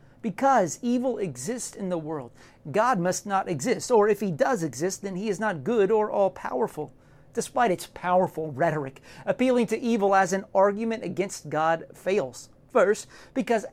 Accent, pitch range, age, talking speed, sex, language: American, 160-225 Hz, 40-59, 160 wpm, male, English